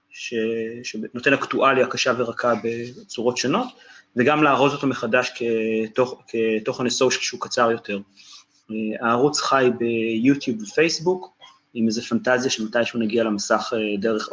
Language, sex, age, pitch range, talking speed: Hebrew, male, 30-49, 115-140 Hz, 115 wpm